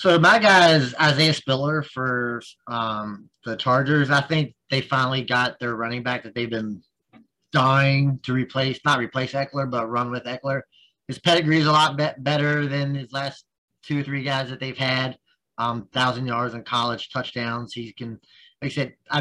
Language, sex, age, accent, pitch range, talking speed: English, male, 30-49, American, 125-170 Hz, 185 wpm